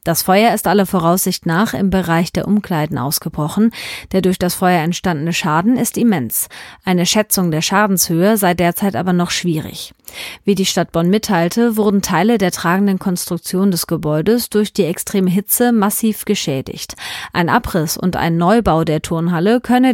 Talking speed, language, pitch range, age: 165 wpm, German, 170-210 Hz, 30-49